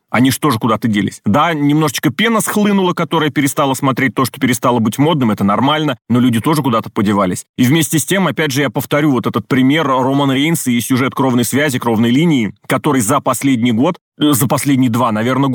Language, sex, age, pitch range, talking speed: Russian, male, 30-49, 120-155 Hz, 200 wpm